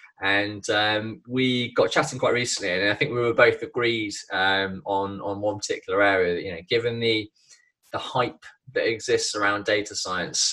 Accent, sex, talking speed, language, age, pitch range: British, male, 175 wpm, English, 20-39, 100-120 Hz